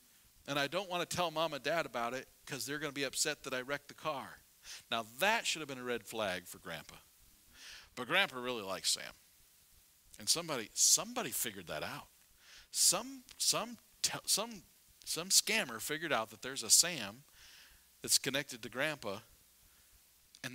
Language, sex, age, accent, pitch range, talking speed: English, male, 50-69, American, 100-155 Hz, 170 wpm